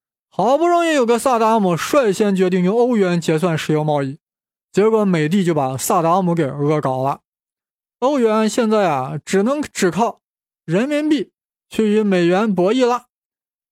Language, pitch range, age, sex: Chinese, 160-215 Hz, 20-39, male